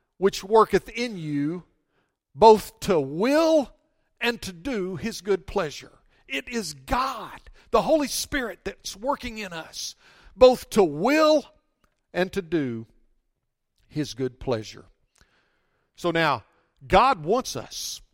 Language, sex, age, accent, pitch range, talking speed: English, male, 50-69, American, 150-230 Hz, 120 wpm